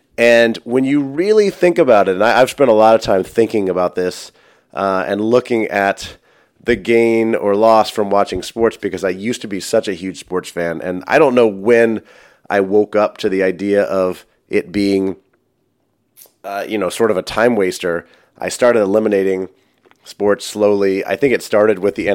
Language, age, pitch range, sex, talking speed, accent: English, 30-49, 95-115 Hz, male, 190 wpm, American